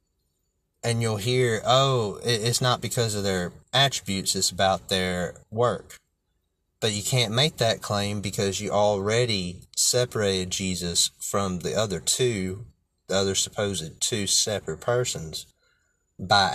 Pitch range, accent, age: 90-105 Hz, American, 30-49